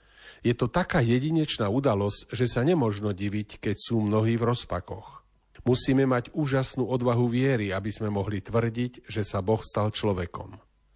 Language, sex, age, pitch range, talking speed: Slovak, male, 40-59, 105-130 Hz, 155 wpm